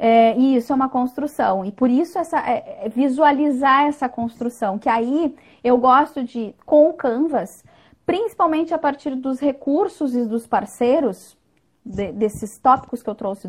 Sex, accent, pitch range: female, Brazilian, 230-285 Hz